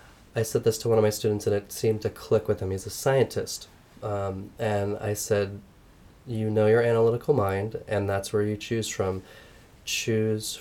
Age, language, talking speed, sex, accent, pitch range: 20-39, English, 190 wpm, male, American, 100-110 Hz